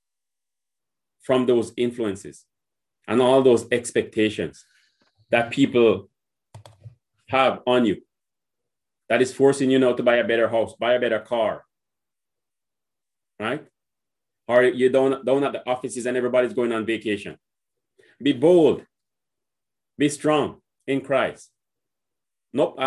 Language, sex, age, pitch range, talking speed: English, male, 30-49, 115-140 Hz, 120 wpm